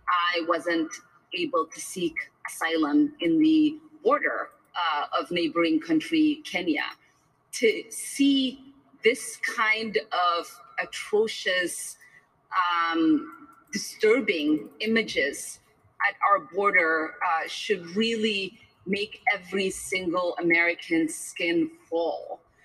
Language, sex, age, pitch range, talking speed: English, female, 30-49, 190-295 Hz, 95 wpm